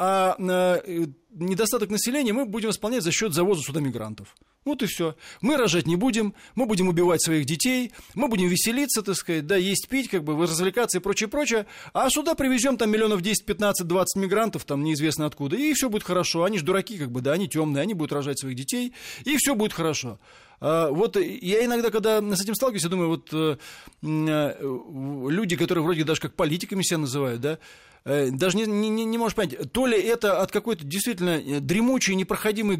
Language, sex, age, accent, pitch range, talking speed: Russian, male, 20-39, native, 155-215 Hz, 185 wpm